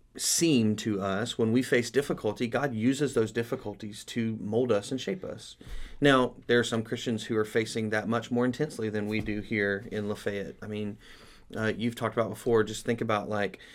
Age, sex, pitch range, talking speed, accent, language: 30-49, male, 105-125 Hz, 200 wpm, American, English